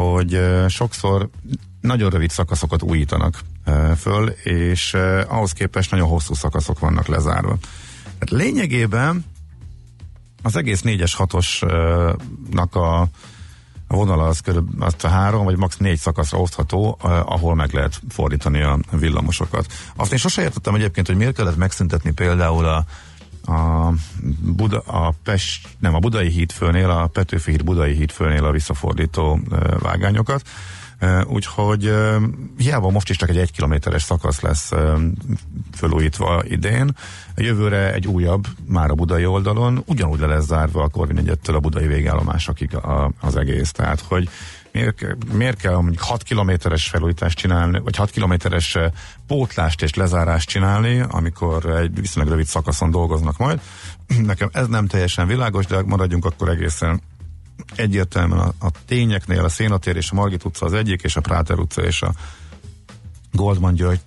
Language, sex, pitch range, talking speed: Hungarian, male, 80-100 Hz, 140 wpm